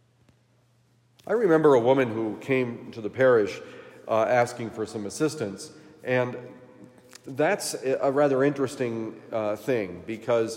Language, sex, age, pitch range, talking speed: English, male, 40-59, 110-135 Hz, 125 wpm